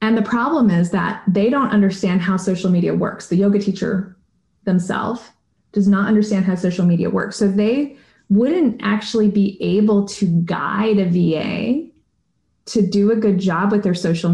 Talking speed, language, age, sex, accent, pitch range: 170 wpm, English, 20-39, female, American, 180-210 Hz